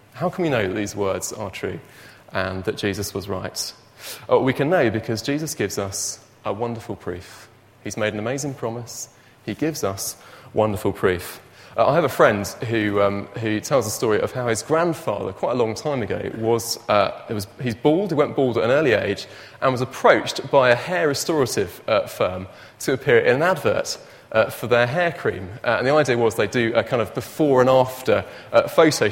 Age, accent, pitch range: 30-49, British, 105-145 Hz